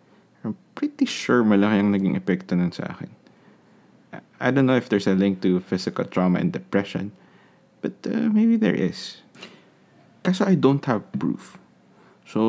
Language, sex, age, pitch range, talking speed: Filipino, male, 20-39, 95-140 Hz, 155 wpm